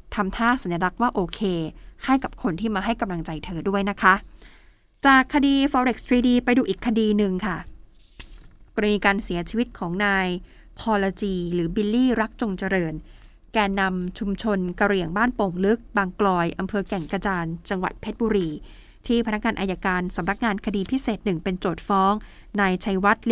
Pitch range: 185-235 Hz